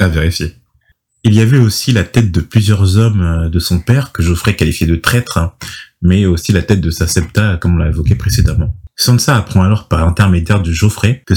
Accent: French